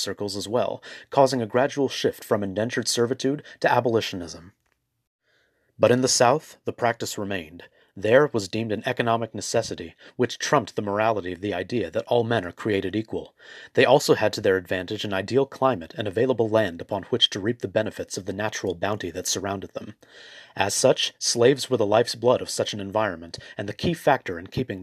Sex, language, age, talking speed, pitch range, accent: male, English, 30-49, 195 wpm, 105-125 Hz, American